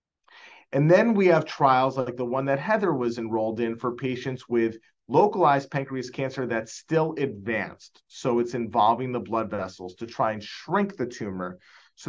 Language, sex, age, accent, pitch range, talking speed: English, male, 30-49, American, 115-135 Hz, 175 wpm